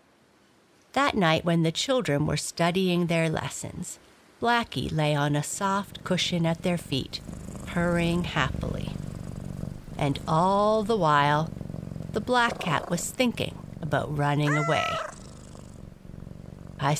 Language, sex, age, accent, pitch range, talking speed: English, female, 50-69, American, 150-195 Hz, 115 wpm